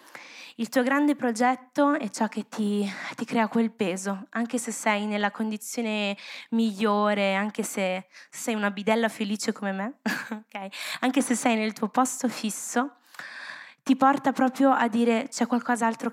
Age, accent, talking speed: 20-39, native, 155 wpm